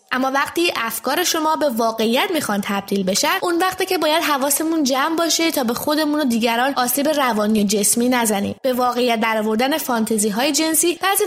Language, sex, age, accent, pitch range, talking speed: English, female, 20-39, Canadian, 230-320 Hz, 180 wpm